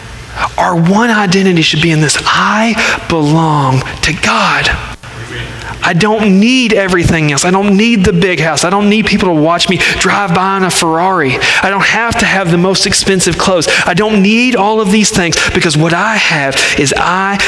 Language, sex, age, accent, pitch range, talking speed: English, male, 40-59, American, 125-185 Hz, 190 wpm